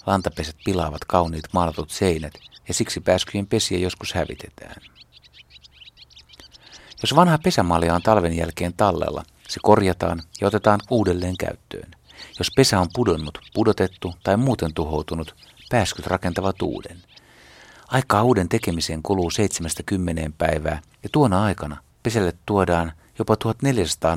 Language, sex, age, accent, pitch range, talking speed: Finnish, male, 60-79, native, 80-105 Hz, 120 wpm